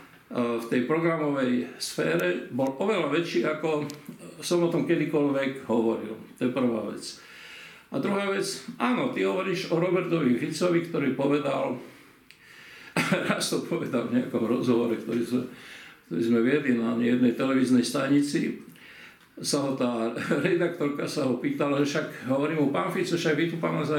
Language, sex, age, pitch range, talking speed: Slovak, male, 50-69, 125-170 Hz, 145 wpm